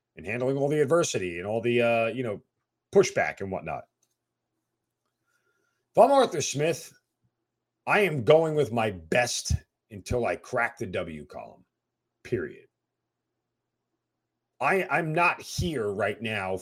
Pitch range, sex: 120-195 Hz, male